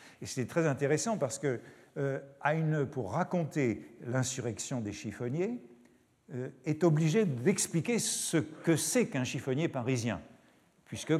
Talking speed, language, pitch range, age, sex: 115 wpm, French, 125-165 Hz, 50-69, male